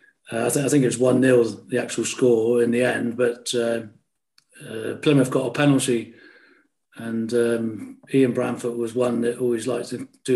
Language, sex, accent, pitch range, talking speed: English, male, British, 120-135 Hz, 185 wpm